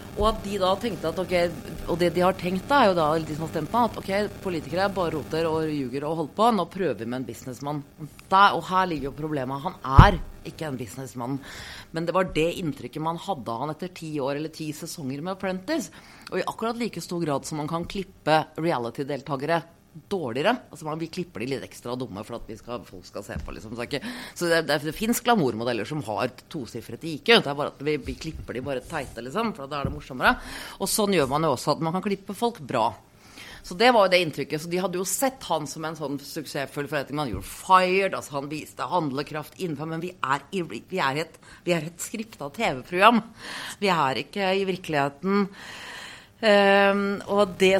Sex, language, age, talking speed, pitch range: female, English, 30-49, 215 wpm, 145-195 Hz